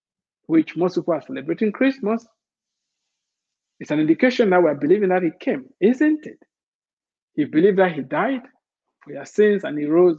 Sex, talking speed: male, 170 wpm